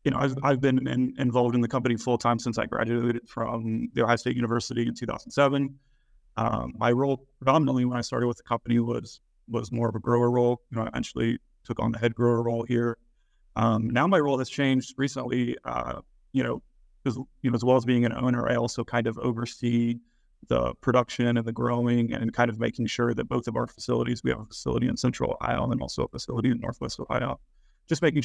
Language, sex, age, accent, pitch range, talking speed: English, male, 30-49, American, 115-125 Hz, 220 wpm